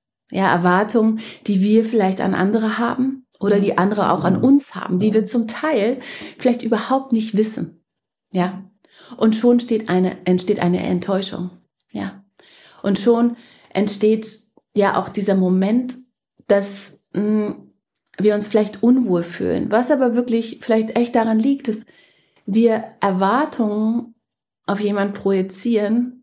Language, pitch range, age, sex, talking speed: German, 195-235 Hz, 30-49, female, 135 wpm